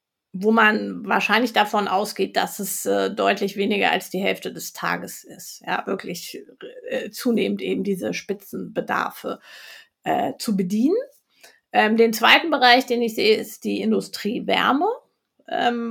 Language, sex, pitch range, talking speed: German, female, 210-245 Hz, 140 wpm